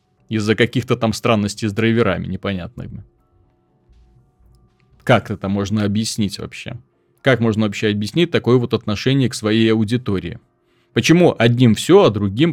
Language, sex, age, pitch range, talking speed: Russian, male, 30-49, 105-145 Hz, 130 wpm